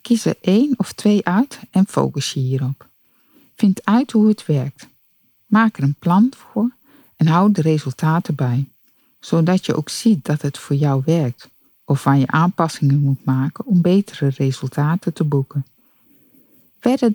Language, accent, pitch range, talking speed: Dutch, Dutch, 140-215 Hz, 160 wpm